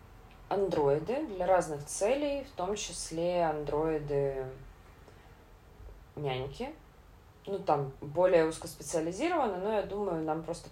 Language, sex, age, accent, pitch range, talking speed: Russian, female, 20-39, native, 130-185 Hz, 100 wpm